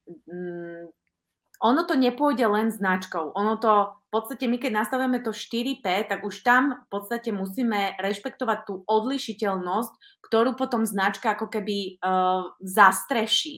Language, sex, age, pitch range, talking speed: Slovak, female, 30-49, 195-240 Hz, 135 wpm